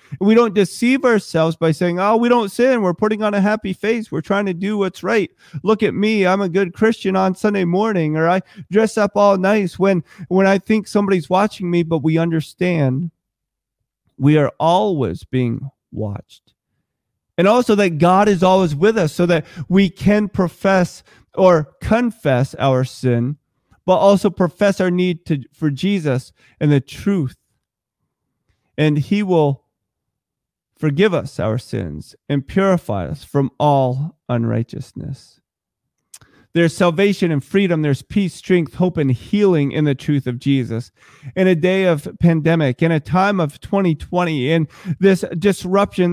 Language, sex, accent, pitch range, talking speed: English, male, American, 155-200 Hz, 155 wpm